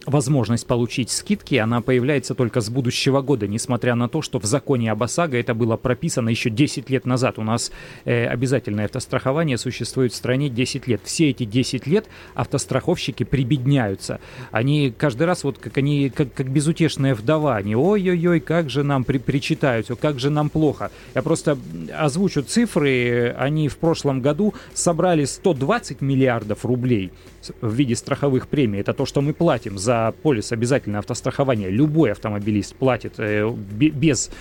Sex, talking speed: male, 155 wpm